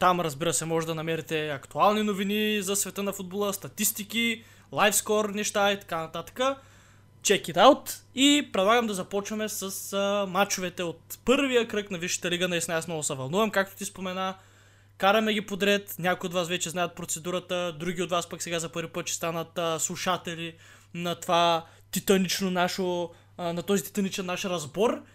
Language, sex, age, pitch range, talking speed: Bulgarian, male, 20-39, 165-210 Hz, 165 wpm